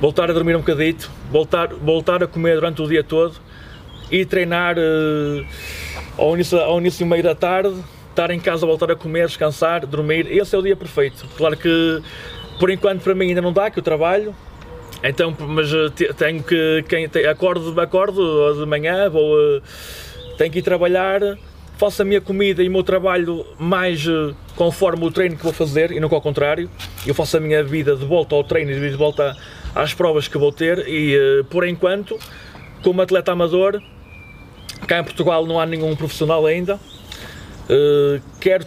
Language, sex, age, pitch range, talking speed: Portuguese, male, 20-39, 145-180 Hz, 185 wpm